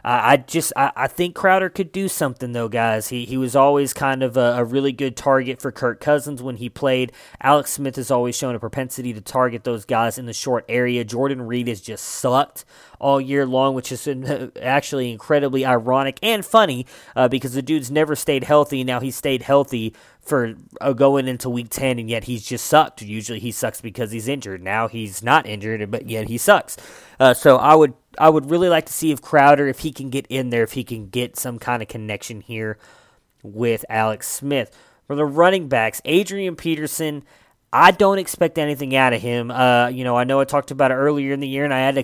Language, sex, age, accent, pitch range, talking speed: English, male, 20-39, American, 120-145 Hz, 220 wpm